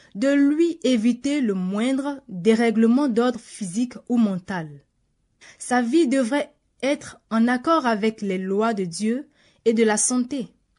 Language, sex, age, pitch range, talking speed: French, female, 20-39, 225-290 Hz, 140 wpm